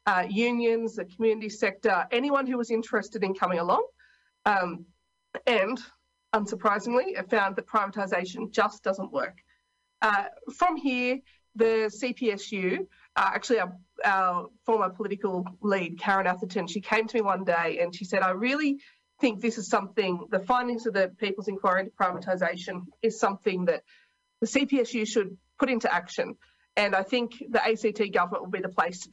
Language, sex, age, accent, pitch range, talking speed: English, female, 30-49, Australian, 185-230 Hz, 165 wpm